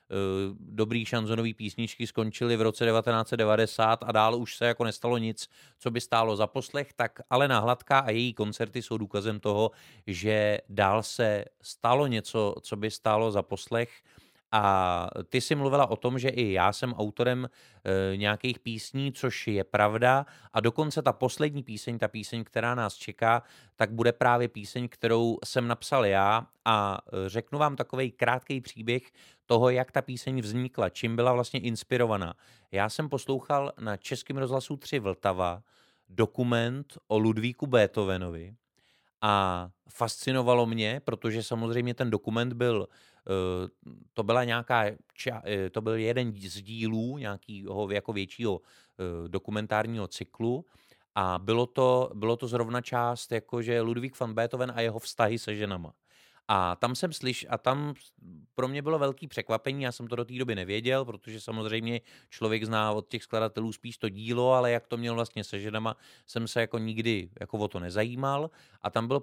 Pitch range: 110-125 Hz